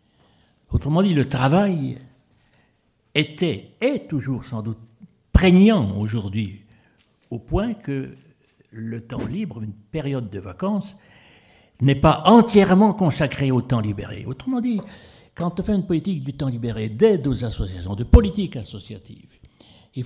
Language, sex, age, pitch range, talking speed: French, male, 60-79, 110-170 Hz, 135 wpm